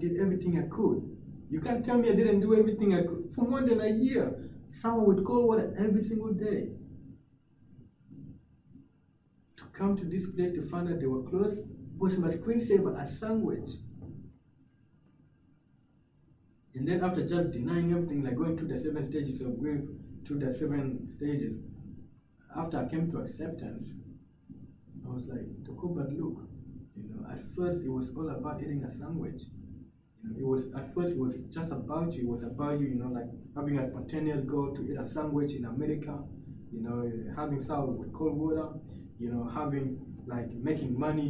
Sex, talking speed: male, 180 wpm